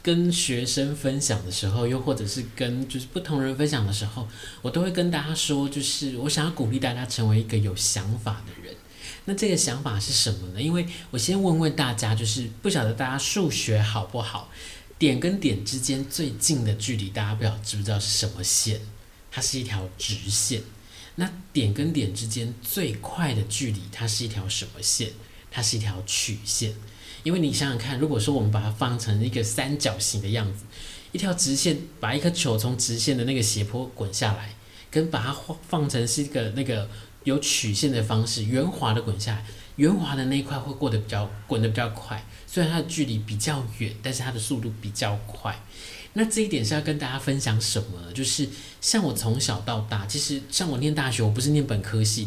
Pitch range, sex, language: 105-140 Hz, male, Chinese